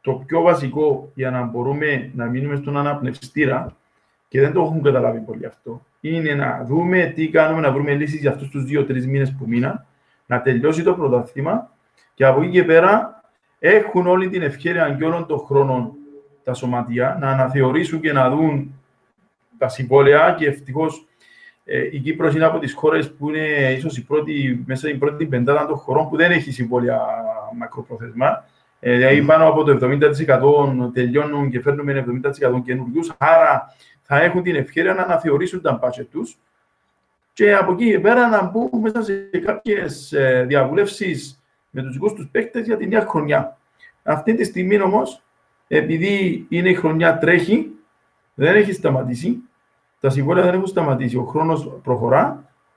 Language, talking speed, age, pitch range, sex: Greek, 160 wpm, 40-59, 135-180 Hz, male